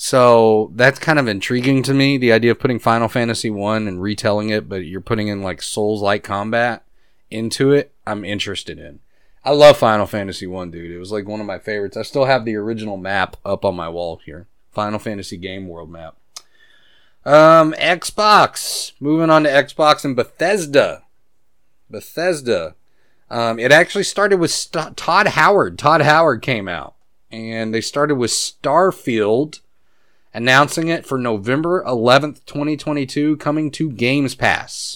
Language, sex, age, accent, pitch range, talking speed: English, male, 30-49, American, 100-145 Hz, 160 wpm